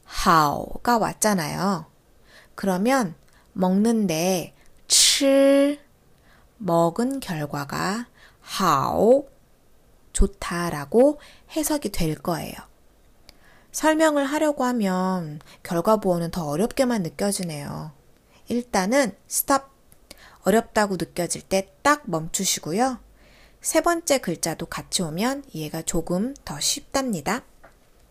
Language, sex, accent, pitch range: Korean, female, native, 175-250 Hz